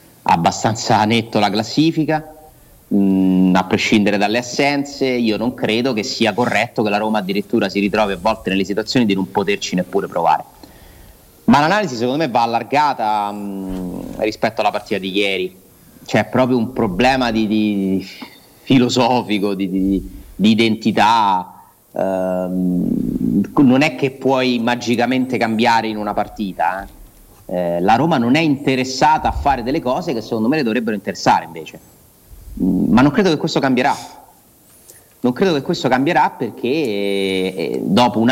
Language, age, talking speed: Italian, 30-49, 150 wpm